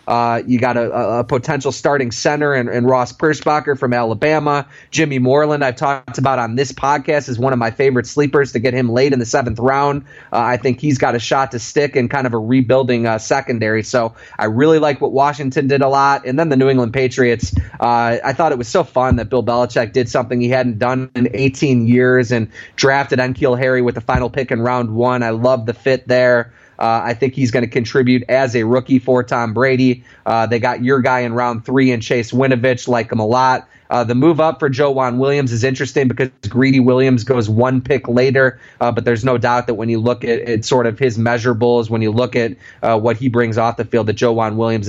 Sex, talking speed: male, 235 wpm